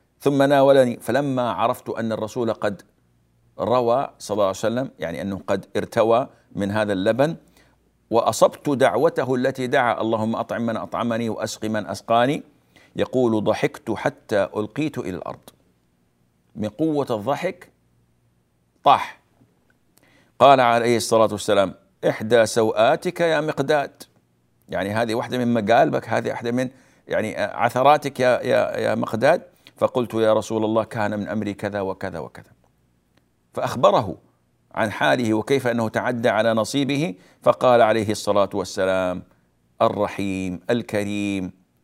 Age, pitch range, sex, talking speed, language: 50-69, 95-120 Hz, male, 120 wpm, Arabic